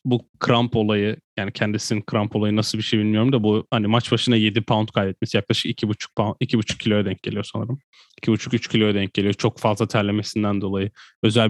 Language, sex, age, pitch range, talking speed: Turkish, male, 10-29, 110-125 Hz, 190 wpm